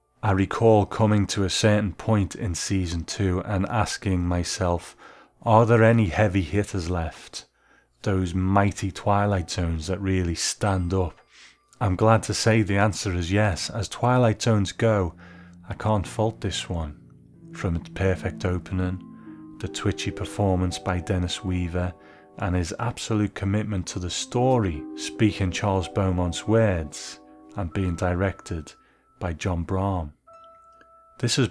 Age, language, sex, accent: 30-49, English, male, British